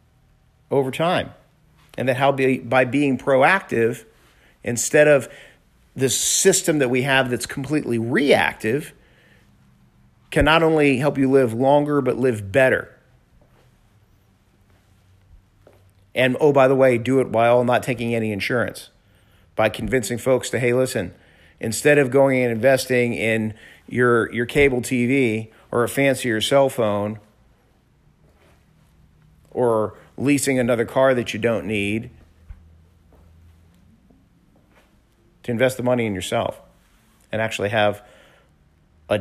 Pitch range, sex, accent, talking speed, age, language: 100-130 Hz, male, American, 120 wpm, 50-69, English